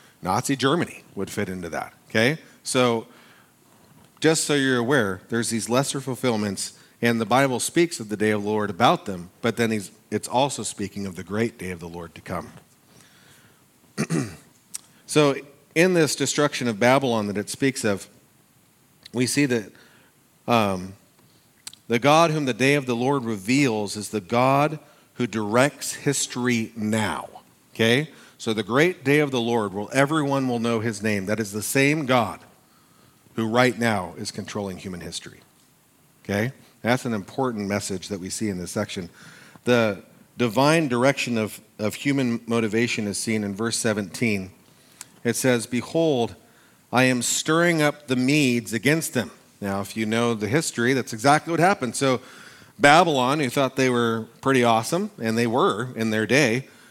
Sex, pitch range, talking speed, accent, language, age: male, 105-135 Hz, 165 wpm, American, English, 40-59